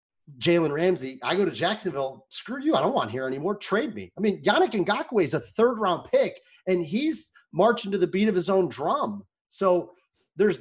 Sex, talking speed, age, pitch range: male, 205 wpm, 30-49, 140-195 Hz